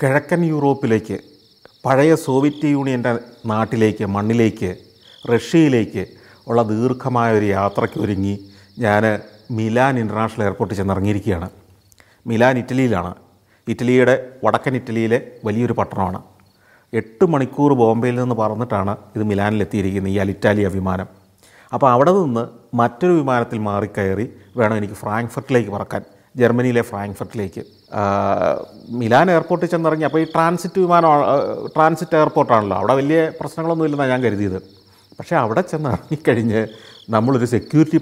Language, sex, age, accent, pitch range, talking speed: Malayalam, male, 40-59, native, 105-145 Hz, 105 wpm